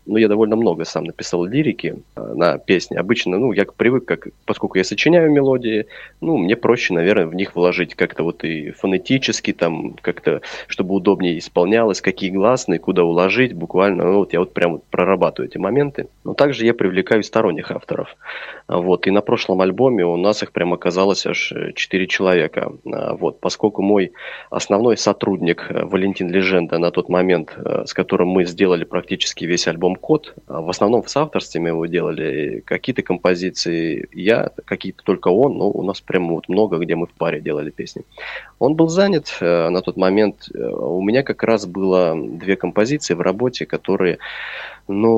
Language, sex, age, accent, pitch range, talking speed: Russian, male, 20-39, native, 90-110 Hz, 165 wpm